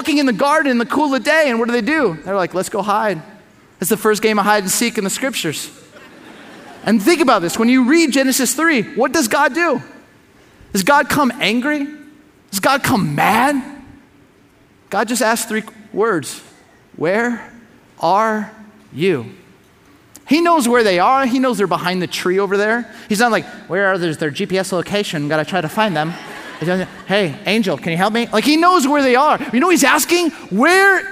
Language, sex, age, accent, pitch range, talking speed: English, male, 30-49, American, 195-280 Hz, 200 wpm